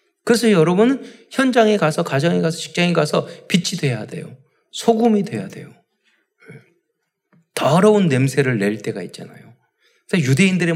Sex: male